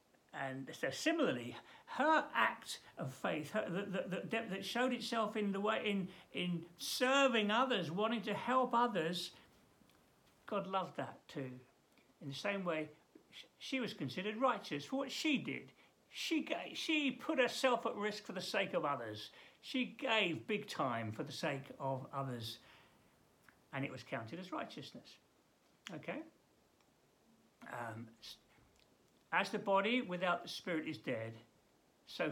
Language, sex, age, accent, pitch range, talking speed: English, male, 60-79, British, 130-215 Hz, 150 wpm